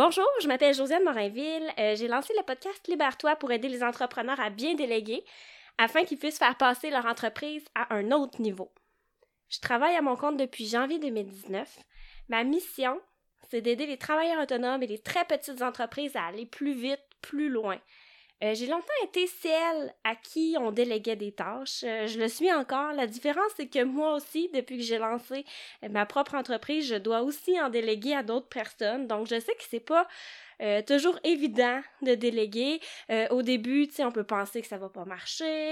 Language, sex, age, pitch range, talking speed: French, female, 20-39, 215-285 Hz, 195 wpm